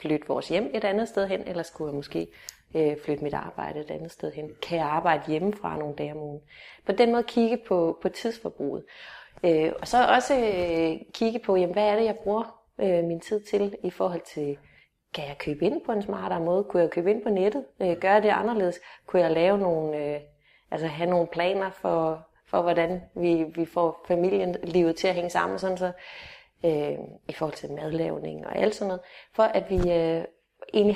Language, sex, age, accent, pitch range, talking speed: Danish, female, 30-49, native, 165-205 Hz, 205 wpm